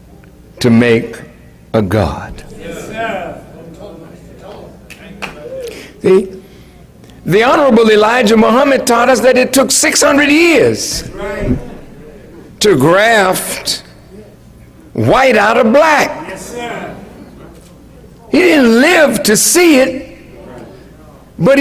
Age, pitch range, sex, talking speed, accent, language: 60-79, 220-290 Hz, male, 80 wpm, American, English